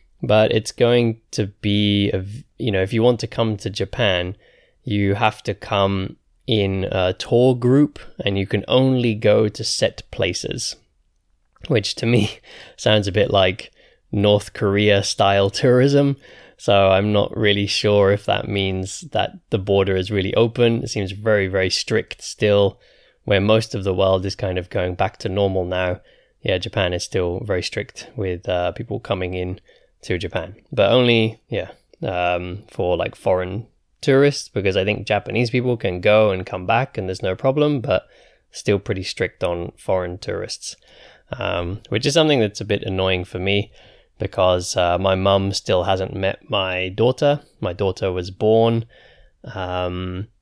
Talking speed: 165 wpm